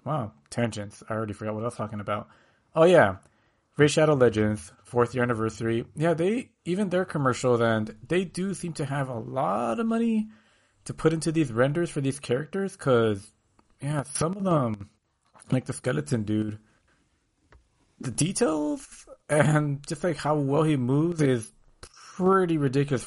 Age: 30-49